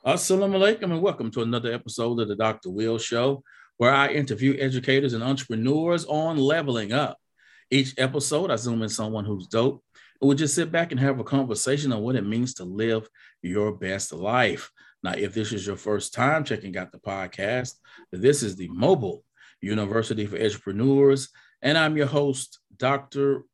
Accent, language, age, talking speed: American, English, 40-59, 180 wpm